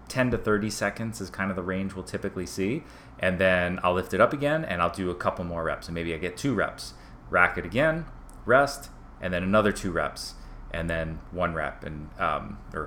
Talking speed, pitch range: 225 wpm, 85-105 Hz